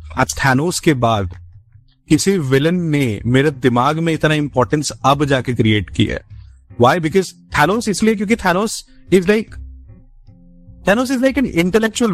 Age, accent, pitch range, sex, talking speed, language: 30-49, native, 120-180 Hz, male, 130 wpm, Hindi